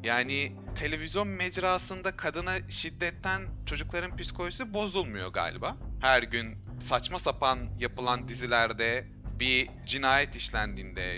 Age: 30-49